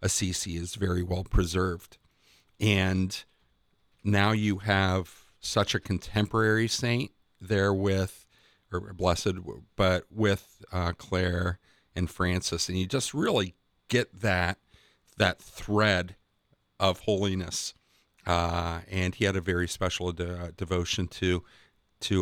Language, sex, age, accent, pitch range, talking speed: English, male, 50-69, American, 90-100 Hz, 120 wpm